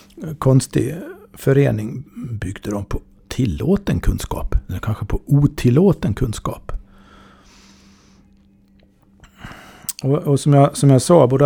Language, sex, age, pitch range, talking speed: Swedish, male, 50-69, 100-135 Hz, 105 wpm